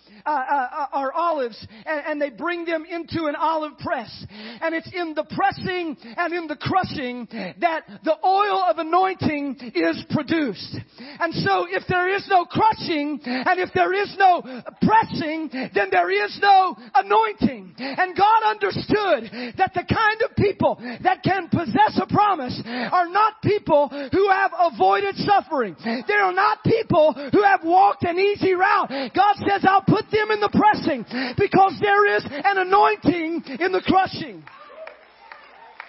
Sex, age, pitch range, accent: male, 40-59, 295-385 Hz, American